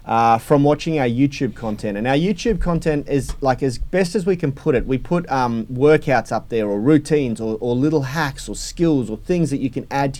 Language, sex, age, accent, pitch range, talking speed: English, male, 30-49, Australian, 115-155 Hz, 235 wpm